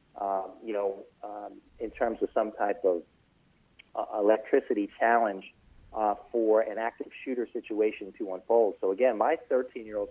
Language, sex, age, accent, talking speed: English, male, 40-59, American, 150 wpm